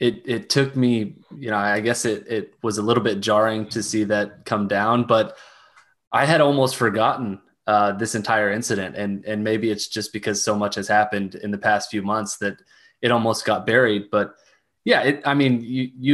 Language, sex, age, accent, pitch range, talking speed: English, male, 20-39, American, 105-120 Hz, 205 wpm